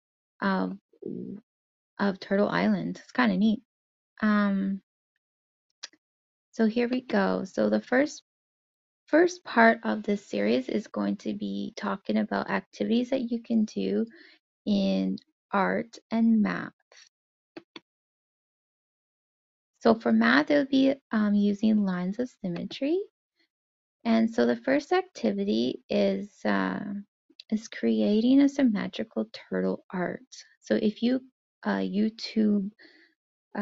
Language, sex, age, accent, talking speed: English, female, 20-39, American, 110 wpm